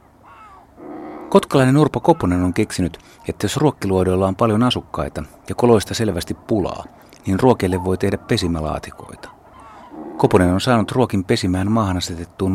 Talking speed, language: 130 wpm, Finnish